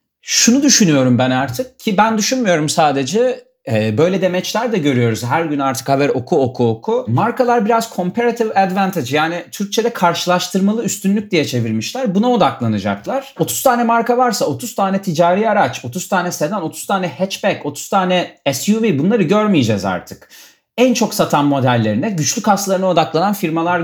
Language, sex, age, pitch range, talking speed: Turkish, male, 40-59, 140-215 Hz, 150 wpm